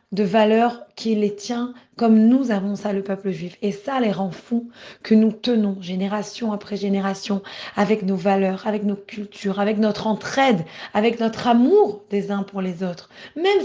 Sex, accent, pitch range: female, French, 200-235 Hz